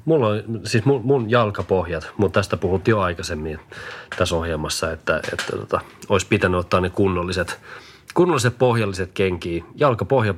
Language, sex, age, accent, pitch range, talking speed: Finnish, male, 30-49, native, 95-115 Hz, 145 wpm